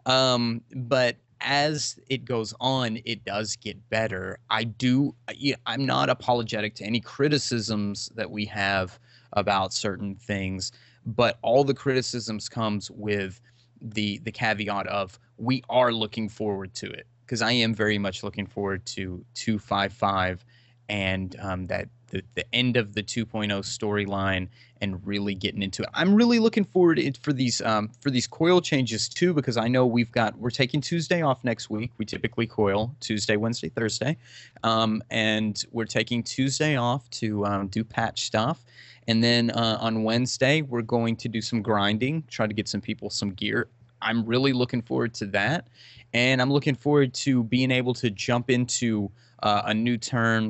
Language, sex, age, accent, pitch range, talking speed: English, male, 20-39, American, 105-125 Hz, 170 wpm